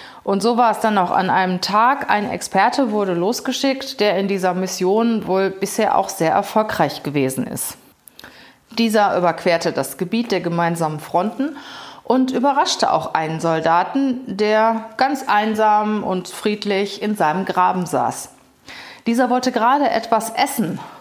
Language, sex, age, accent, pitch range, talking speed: German, female, 30-49, German, 180-225 Hz, 145 wpm